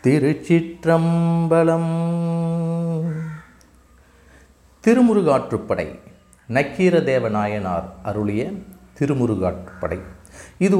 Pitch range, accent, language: 110-165 Hz, native, Tamil